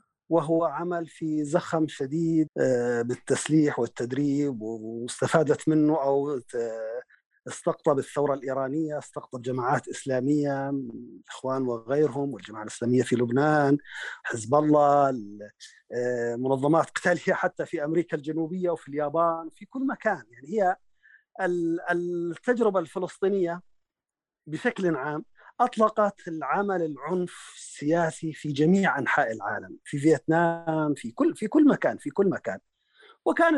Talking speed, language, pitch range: 105 wpm, Arabic, 140-195 Hz